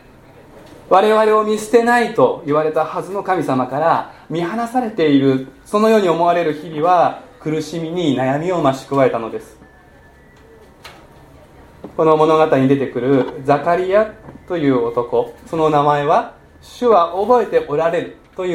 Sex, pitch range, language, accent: male, 140-185 Hz, Japanese, native